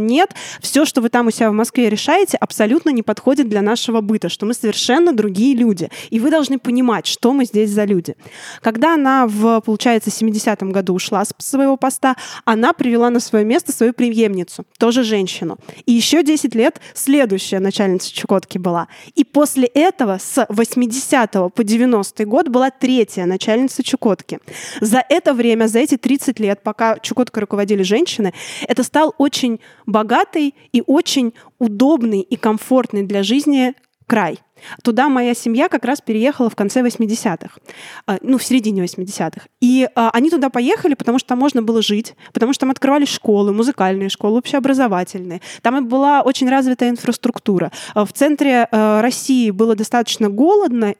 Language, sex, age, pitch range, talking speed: Russian, female, 20-39, 215-270 Hz, 160 wpm